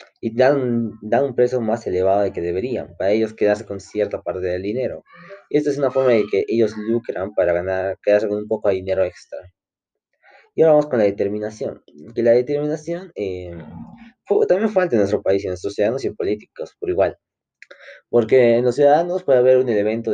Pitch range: 100-130 Hz